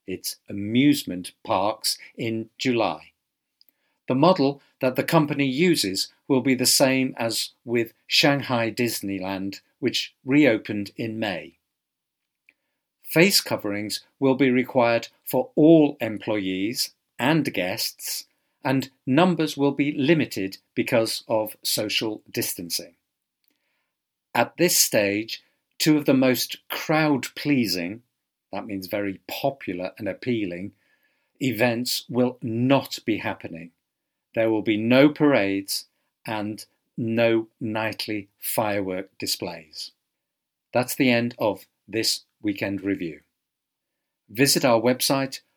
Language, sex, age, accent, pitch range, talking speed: English, male, 50-69, British, 105-135 Hz, 105 wpm